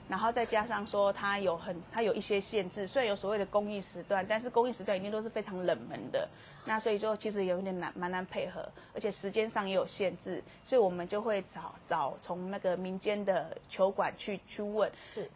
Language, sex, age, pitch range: Chinese, female, 20-39, 190-240 Hz